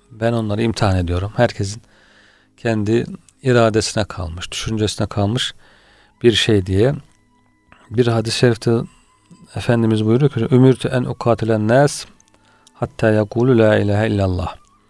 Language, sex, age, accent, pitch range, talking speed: Turkish, male, 40-59, native, 105-125 Hz, 115 wpm